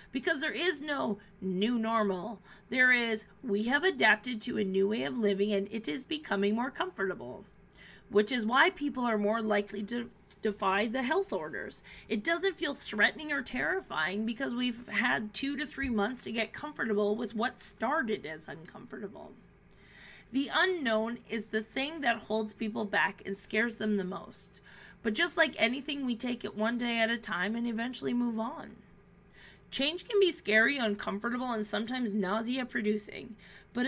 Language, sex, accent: English, female, American